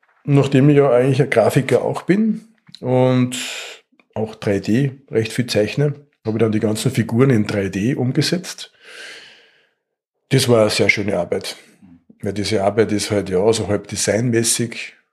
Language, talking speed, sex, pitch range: German, 155 wpm, male, 105-135 Hz